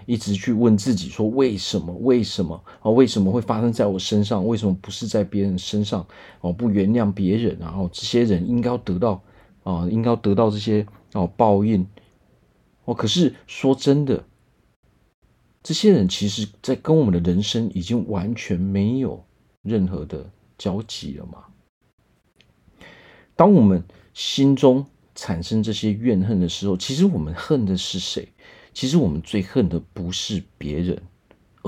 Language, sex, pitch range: Chinese, male, 90-115 Hz